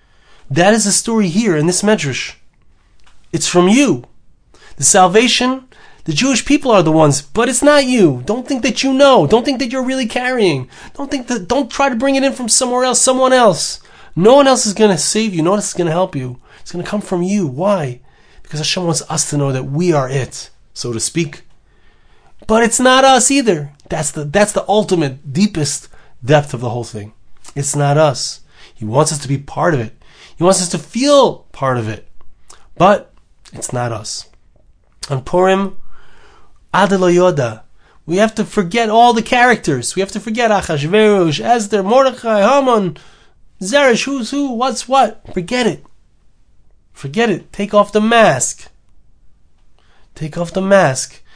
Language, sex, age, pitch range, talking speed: English, male, 30-49, 150-235 Hz, 185 wpm